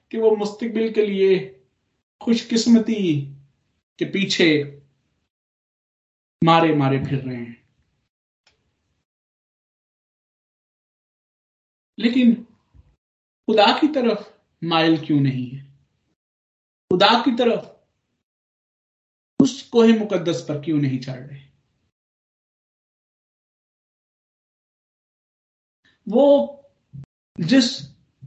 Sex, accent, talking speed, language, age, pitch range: male, native, 70 wpm, Hindi, 50-69, 150-230 Hz